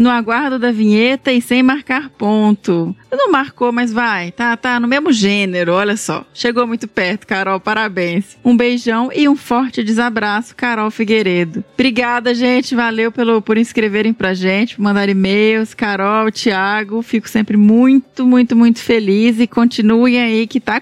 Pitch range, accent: 205-245 Hz, Brazilian